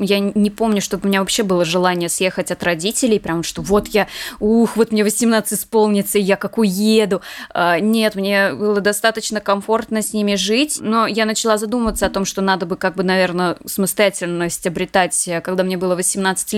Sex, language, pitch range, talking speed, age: female, Russian, 195-230 Hz, 180 wpm, 20-39